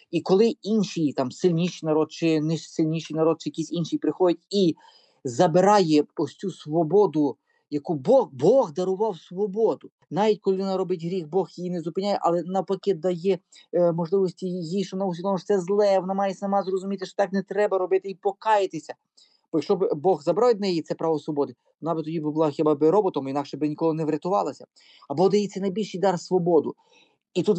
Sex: male